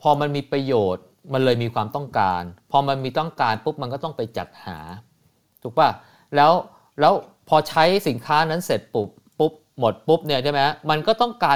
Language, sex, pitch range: Thai, male, 125-160 Hz